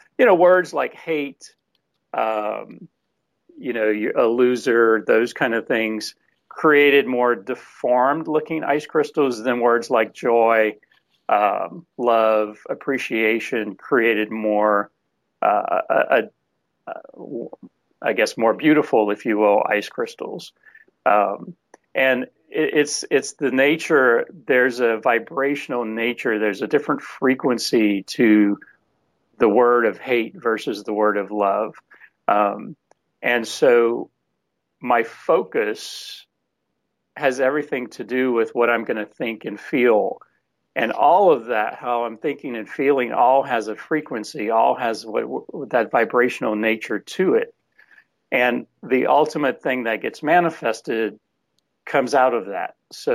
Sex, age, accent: male, 40-59, American